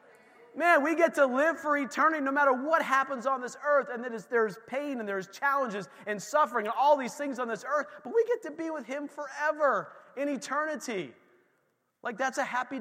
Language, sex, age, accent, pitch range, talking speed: English, male, 30-49, American, 220-295 Hz, 200 wpm